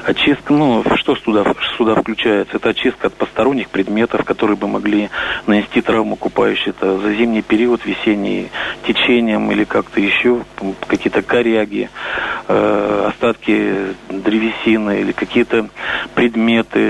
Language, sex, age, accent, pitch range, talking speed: Russian, male, 40-59, native, 105-125 Hz, 120 wpm